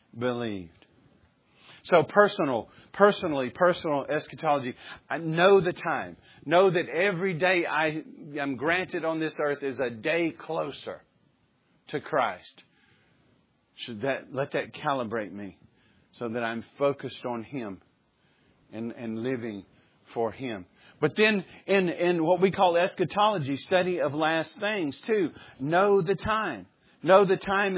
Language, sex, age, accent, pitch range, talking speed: English, male, 50-69, American, 140-185 Hz, 135 wpm